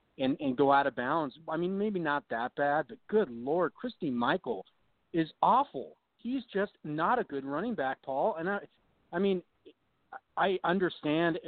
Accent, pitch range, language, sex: American, 125-165 Hz, English, male